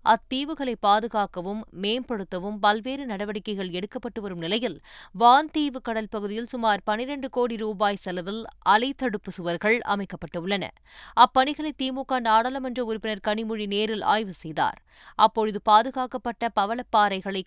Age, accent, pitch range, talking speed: 20-39, native, 205-240 Hz, 105 wpm